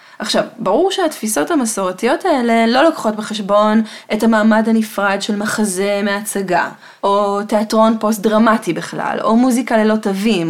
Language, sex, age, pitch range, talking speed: Hebrew, female, 20-39, 205-275 Hz, 130 wpm